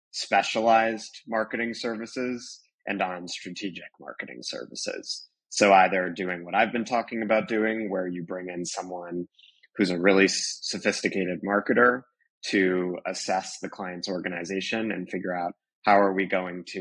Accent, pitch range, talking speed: American, 90-100 Hz, 145 wpm